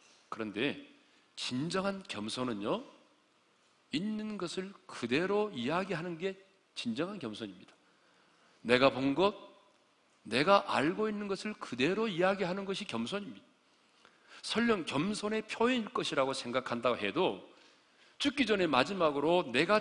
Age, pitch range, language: 40-59, 140-215 Hz, Korean